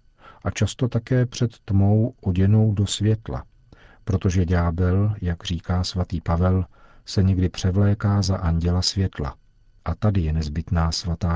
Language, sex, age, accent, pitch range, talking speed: Czech, male, 50-69, native, 90-105 Hz, 130 wpm